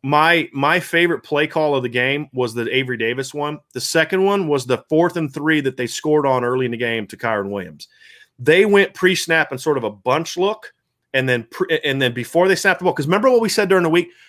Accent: American